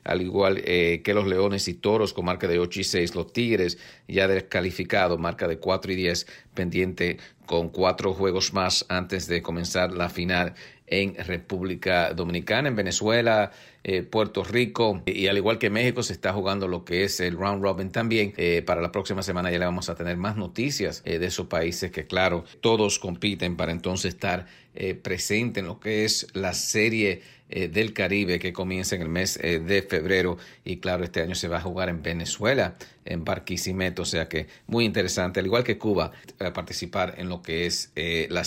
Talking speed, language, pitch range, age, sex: 195 wpm, English, 90-105 Hz, 50-69, male